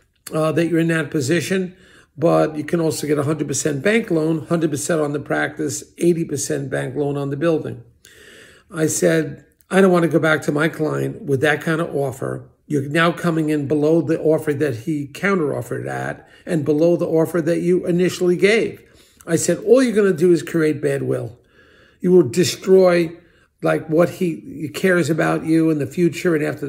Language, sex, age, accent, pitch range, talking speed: English, male, 50-69, American, 150-175 Hz, 185 wpm